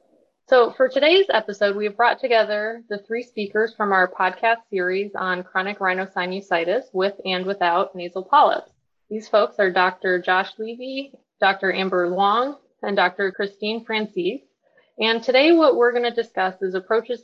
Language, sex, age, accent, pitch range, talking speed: English, female, 20-39, American, 190-235 Hz, 155 wpm